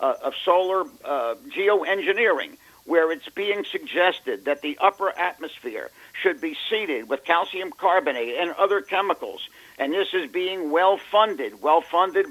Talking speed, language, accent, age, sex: 135 wpm, English, American, 50-69, male